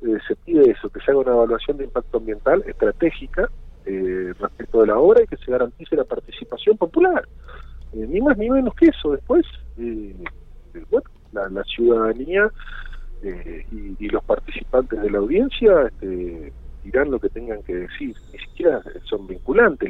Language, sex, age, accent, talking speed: Spanish, male, 40-59, Argentinian, 175 wpm